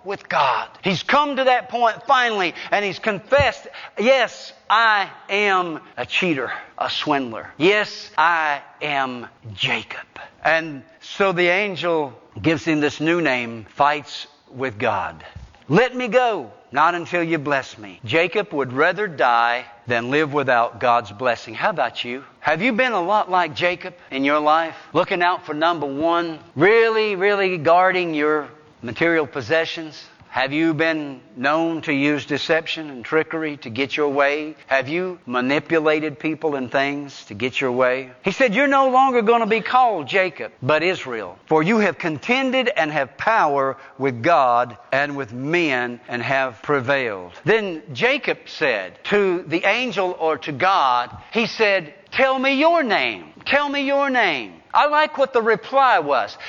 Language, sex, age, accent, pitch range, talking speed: English, male, 50-69, American, 140-200 Hz, 160 wpm